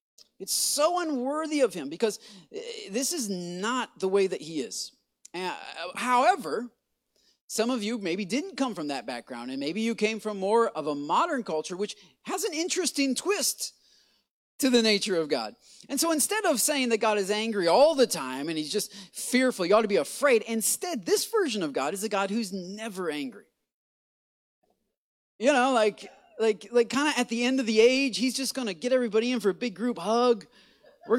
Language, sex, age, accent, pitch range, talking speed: English, male, 30-49, American, 215-285 Hz, 200 wpm